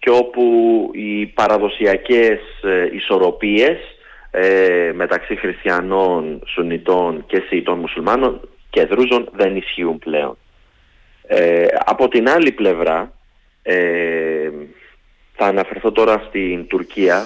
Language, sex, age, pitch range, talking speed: Greek, male, 30-49, 90-120 Hz, 100 wpm